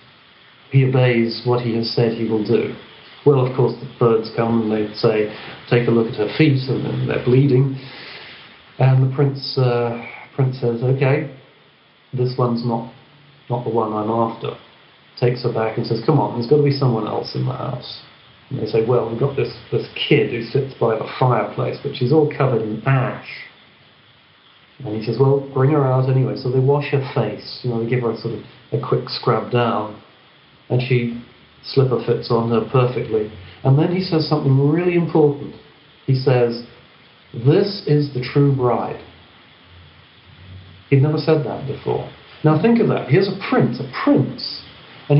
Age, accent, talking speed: 40-59, British, 185 wpm